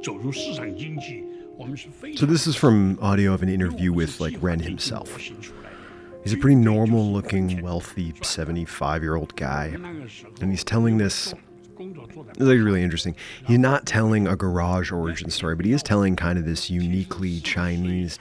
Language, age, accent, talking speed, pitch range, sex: English, 30-49, American, 145 wpm, 85-115 Hz, male